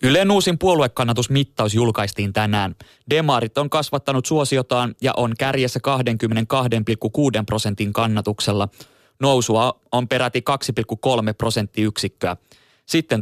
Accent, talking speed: native, 95 wpm